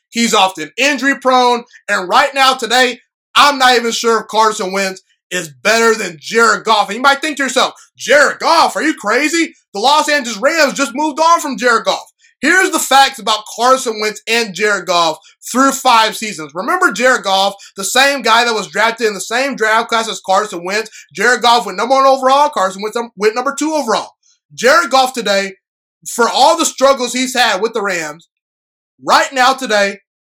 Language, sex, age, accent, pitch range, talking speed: English, male, 20-39, American, 205-265 Hz, 190 wpm